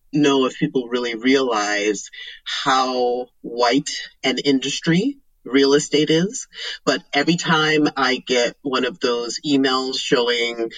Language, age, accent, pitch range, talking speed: English, 30-49, American, 125-150 Hz, 120 wpm